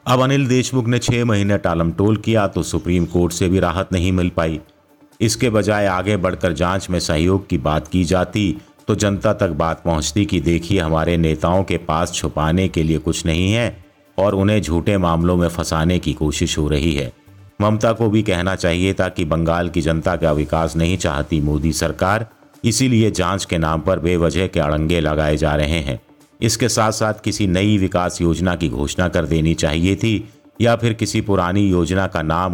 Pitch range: 85-105 Hz